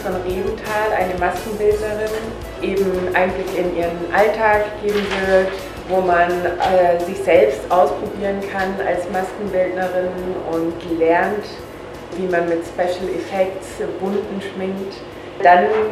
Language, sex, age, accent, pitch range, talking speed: German, female, 20-39, German, 180-210 Hz, 115 wpm